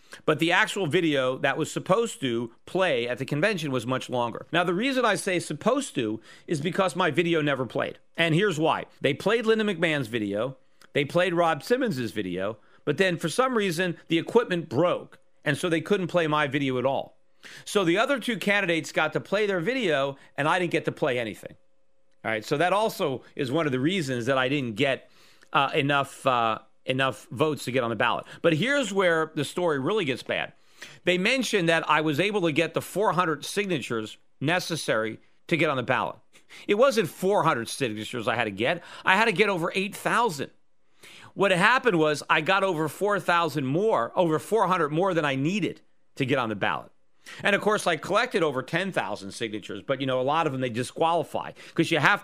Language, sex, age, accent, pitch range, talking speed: English, male, 40-59, American, 140-185 Hz, 205 wpm